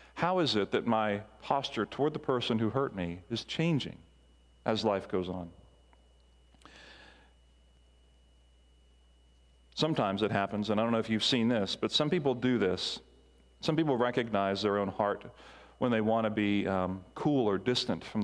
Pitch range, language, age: 85-125 Hz, English, 40-59